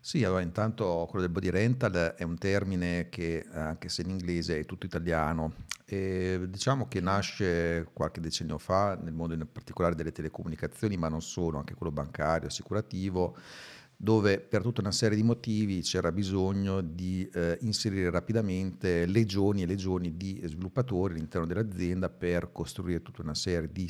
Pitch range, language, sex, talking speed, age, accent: 85-100 Hz, Italian, male, 160 wpm, 50-69, native